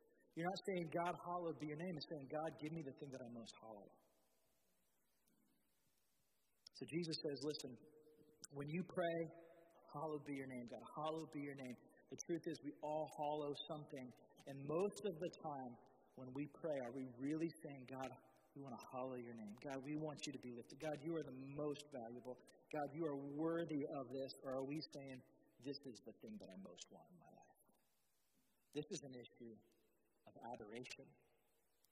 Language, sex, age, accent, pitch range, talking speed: English, male, 50-69, American, 125-155 Hz, 190 wpm